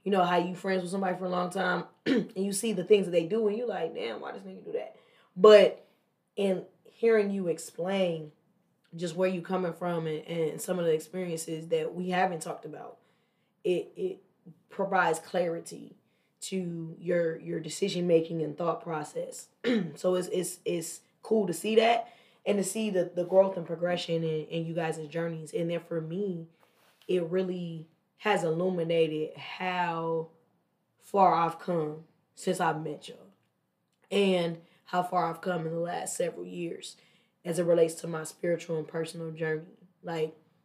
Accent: American